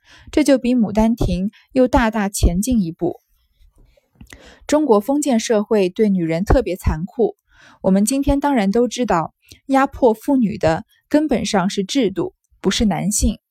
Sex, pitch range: female, 190-255 Hz